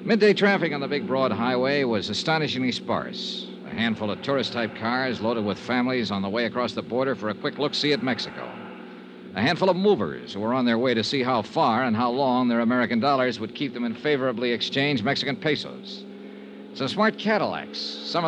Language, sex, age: English, male, 60-79